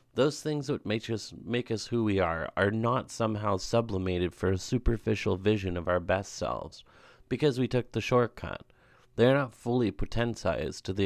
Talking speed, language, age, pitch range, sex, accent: 185 wpm, English, 30-49, 95-115 Hz, male, American